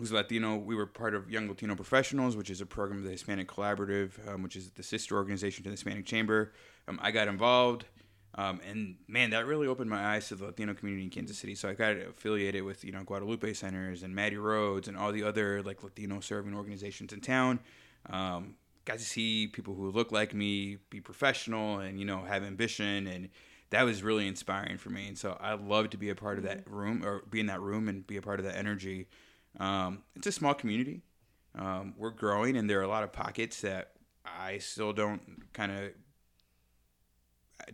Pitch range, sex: 95-110 Hz, male